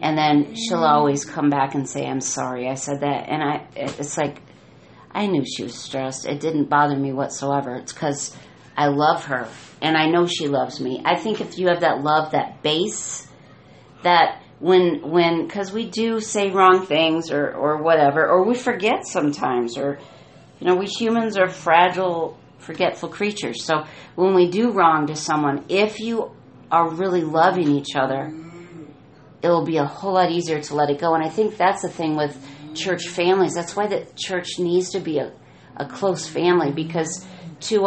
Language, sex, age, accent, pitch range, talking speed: English, female, 40-59, American, 150-180 Hz, 185 wpm